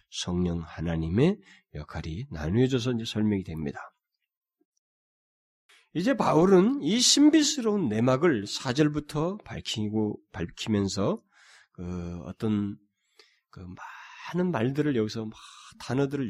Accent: native